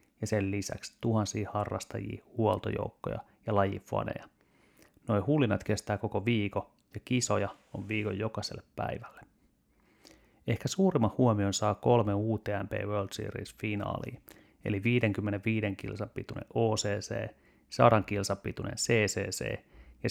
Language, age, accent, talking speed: Finnish, 30-49, native, 105 wpm